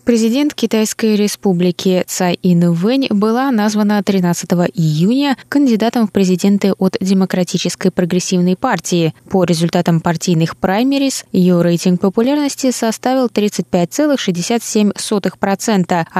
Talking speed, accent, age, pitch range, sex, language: 95 wpm, native, 20-39, 170-235 Hz, female, Russian